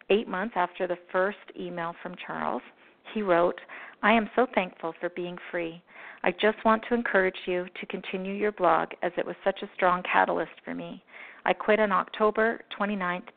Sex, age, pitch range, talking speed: female, 40-59, 180-225 Hz, 185 wpm